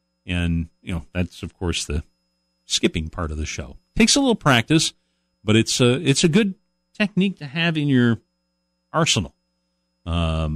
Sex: male